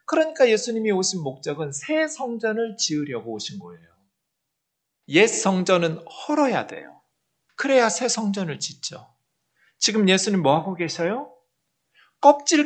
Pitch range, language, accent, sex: 150-230 Hz, Korean, native, male